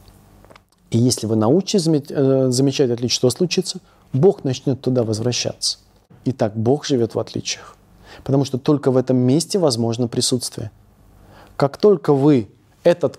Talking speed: 135 wpm